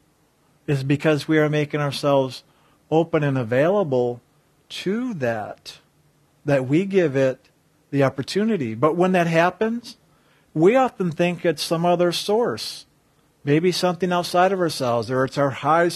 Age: 50-69